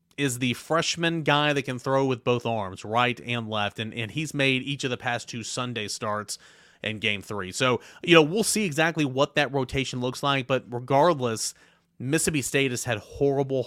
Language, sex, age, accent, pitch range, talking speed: English, male, 30-49, American, 110-135 Hz, 200 wpm